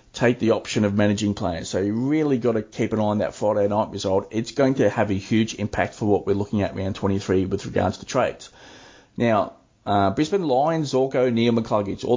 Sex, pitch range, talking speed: male, 100-125 Hz, 220 wpm